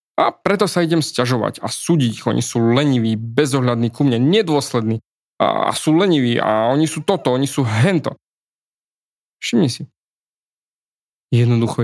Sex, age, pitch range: male, 20-39, 120-150 Hz